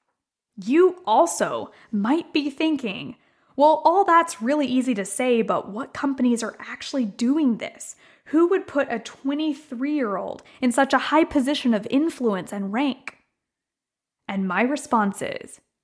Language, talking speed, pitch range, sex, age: English, 140 wpm, 225-300 Hz, female, 20-39